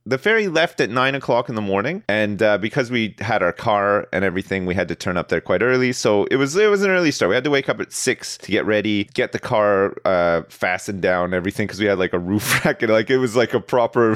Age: 30-49